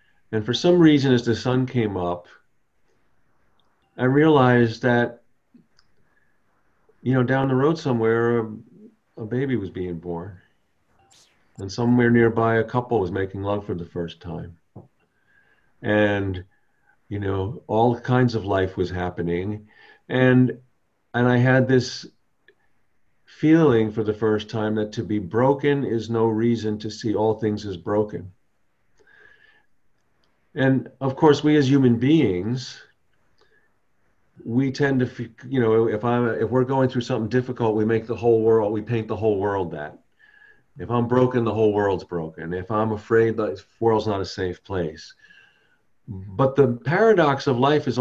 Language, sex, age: English, male, 50-69